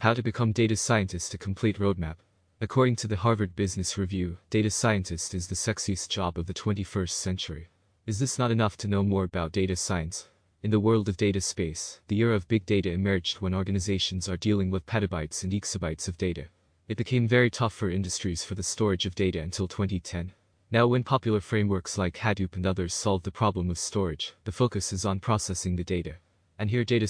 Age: 20-39